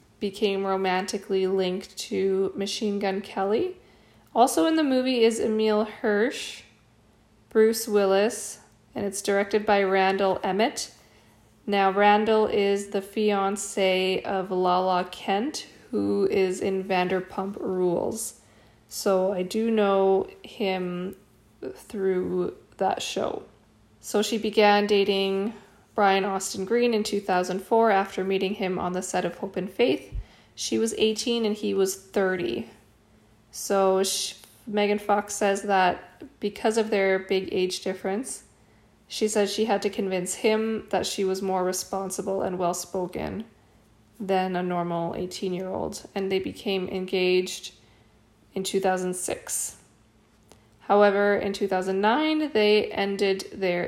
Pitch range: 185-205 Hz